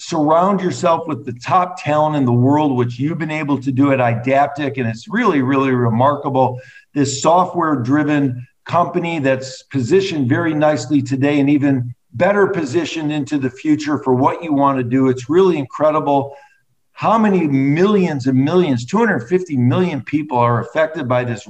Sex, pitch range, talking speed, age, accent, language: male, 130-165 Hz, 160 wpm, 50-69, American, English